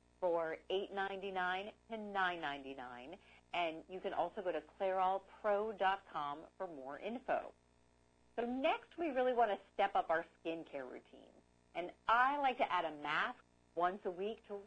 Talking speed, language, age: 145 wpm, English, 50-69